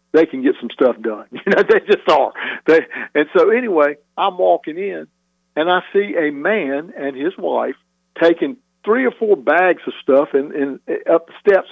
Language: English